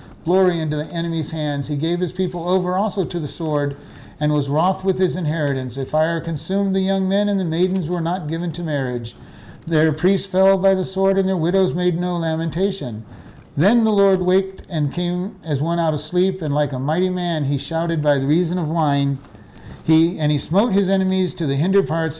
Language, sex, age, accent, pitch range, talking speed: English, male, 50-69, American, 150-185 Hz, 215 wpm